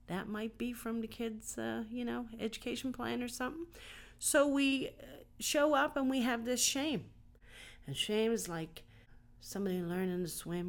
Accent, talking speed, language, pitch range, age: American, 170 wpm, English, 145-225 Hz, 40-59